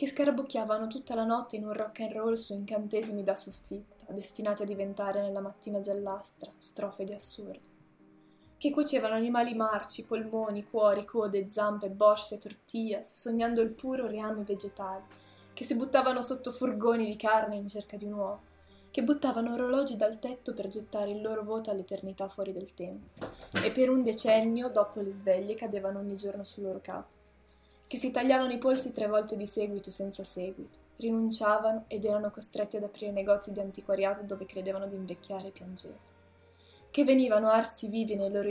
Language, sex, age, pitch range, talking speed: Italian, female, 10-29, 195-220 Hz, 170 wpm